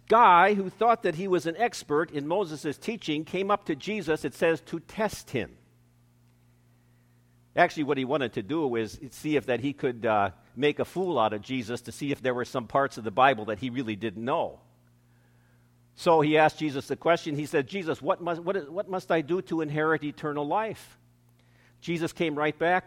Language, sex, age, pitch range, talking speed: English, male, 50-69, 120-180 Hz, 205 wpm